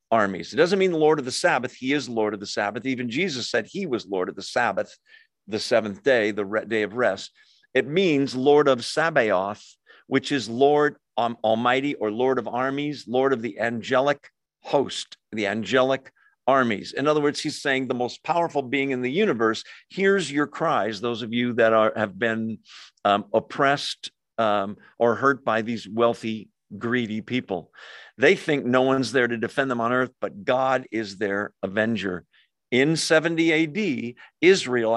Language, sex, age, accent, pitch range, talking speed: English, male, 50-69, American, 110-140 Hz, 180 wpm